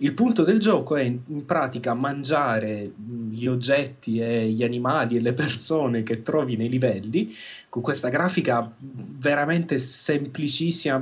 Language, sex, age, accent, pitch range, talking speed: Italian, male, 30-49, native, 115-145 Hz, 135 wpm